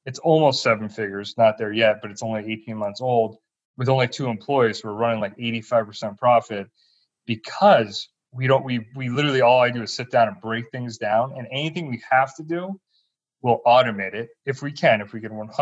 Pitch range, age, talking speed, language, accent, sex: 110-140 Hz, 30-49, 205 wpm, English, American, male